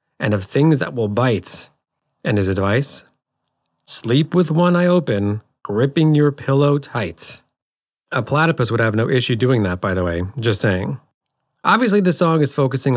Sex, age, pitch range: male, 40-59, 110-145 Hz